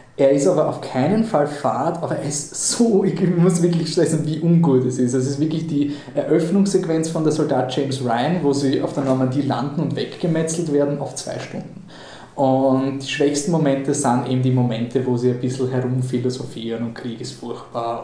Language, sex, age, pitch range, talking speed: German, male, 20-39, 130-160 Hz, 195 wpm